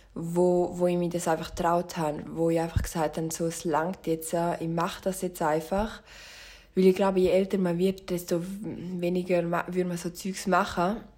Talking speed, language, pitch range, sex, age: 195 wpm, German, 170-195 Hz, female, 20-39